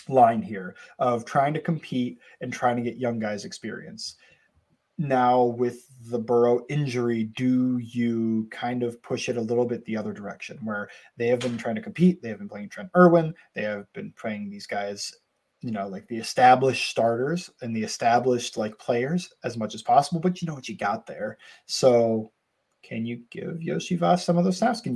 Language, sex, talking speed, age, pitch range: English, male, 195 wpm, 20-39, 115-165 Hz